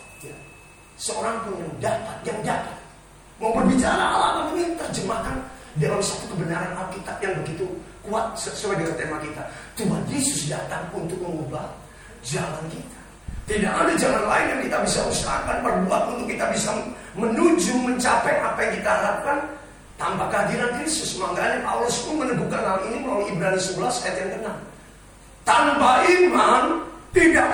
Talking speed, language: 140 wpm, Indonesian